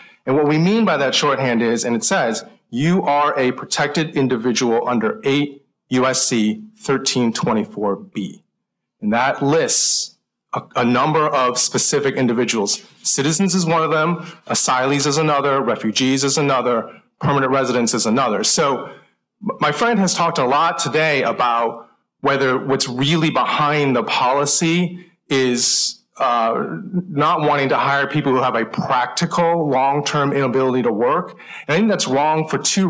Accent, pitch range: American, 125-165 Hz